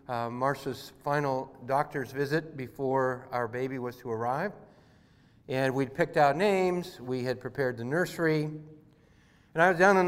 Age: 50-69